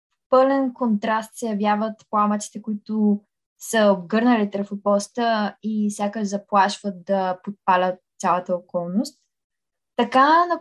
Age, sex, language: 20-39, female, Bulgarian